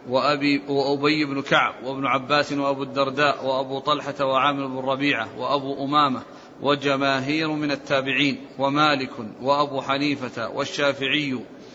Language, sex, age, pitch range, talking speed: Arabic, male, 40-59, 140-155 Hz, 110 wpm